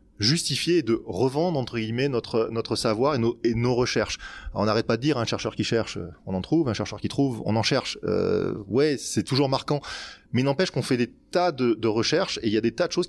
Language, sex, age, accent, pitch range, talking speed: French, male, 20-39, French, 110-145 Hz, 265 wpm